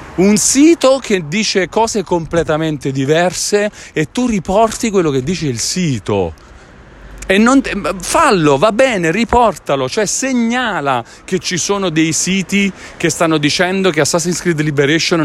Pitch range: 140-210 Hz